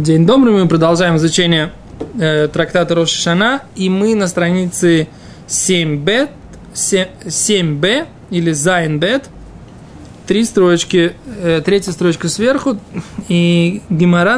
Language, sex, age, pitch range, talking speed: Russian, male, 20-39, 165-200 Hz, 100 wpm